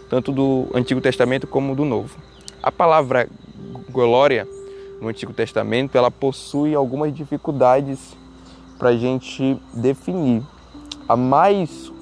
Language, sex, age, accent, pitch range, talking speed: Portuguese, male, 20-39, Brazilian, 115-150 Hz, 110 wpm